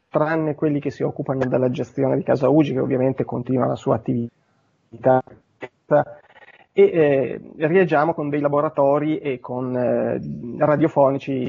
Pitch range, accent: 140-180 Hz, native